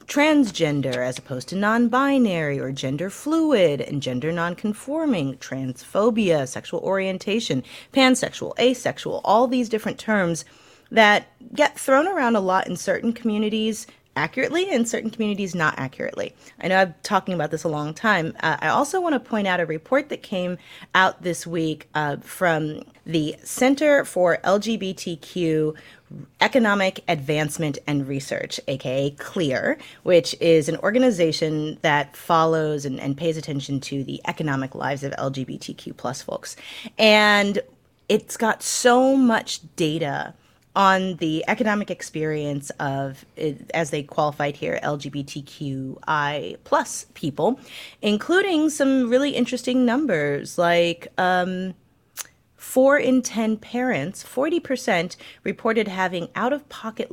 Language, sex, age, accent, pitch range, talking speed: English, female, 30-49, American, 150-230 Hz, 125 wpm